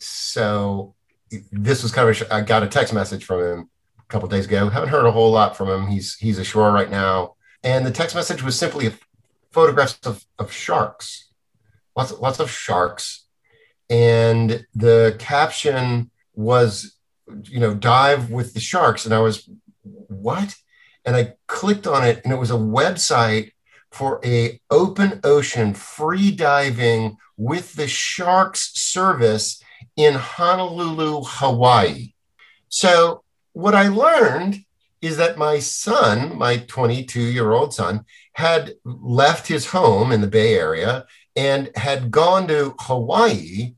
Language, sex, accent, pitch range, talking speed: English, male, American, 115-165 Hz, 145 wpm